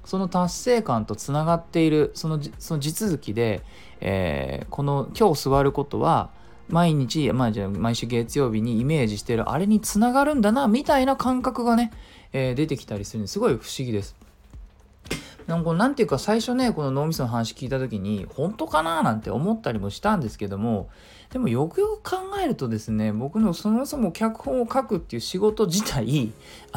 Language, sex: Japanese, male